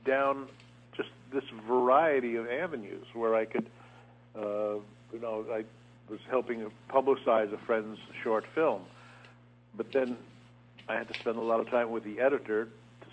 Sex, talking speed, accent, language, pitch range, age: male, 155 wpm, American, English, 100-120 Hz, 60-79